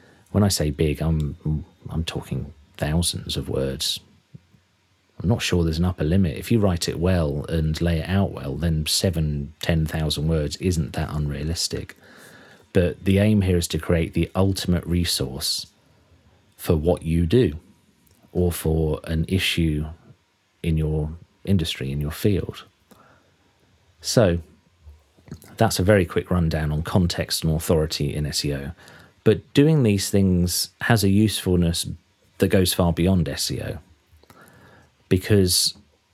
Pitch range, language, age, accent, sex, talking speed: 80-95 Hz, English, 40-59, British, male, 140 wpm